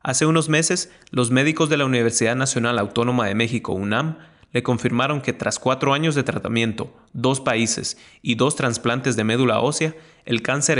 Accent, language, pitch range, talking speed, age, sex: Mexican, Spanish, 115-145 Hz, 170 wpm, 30-49, male